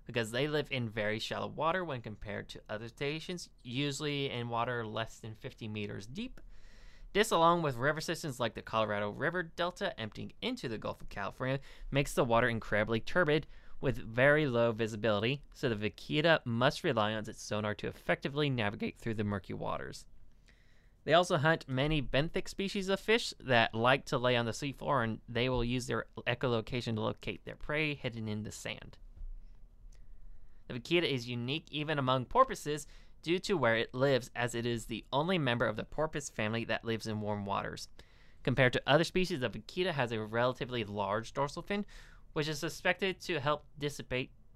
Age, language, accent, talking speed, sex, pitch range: 20-39, English, American, 180 wpm, male, 110-150 Hz